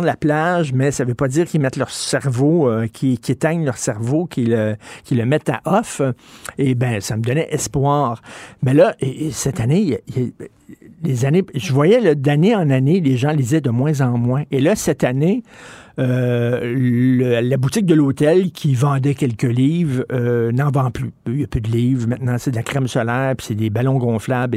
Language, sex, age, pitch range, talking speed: French, male, 60-79, 125-160 Hz, 210 wpm